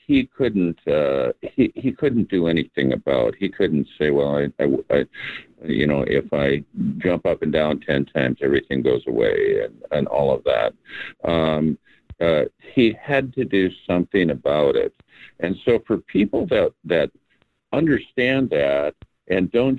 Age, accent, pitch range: 50-69, American, 80-125 Hz